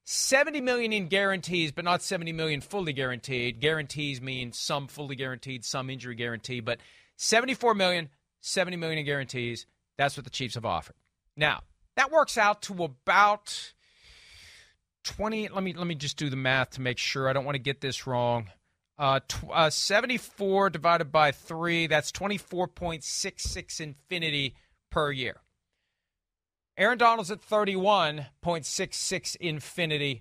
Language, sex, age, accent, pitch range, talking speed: English, male, 40-59, American, 135-195 Hz, 155 wpm